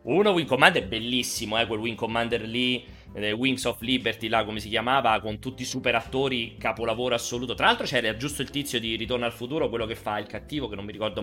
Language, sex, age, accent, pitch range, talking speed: Italian, male, 30-49, native, 95-120 Hz, 225 wpm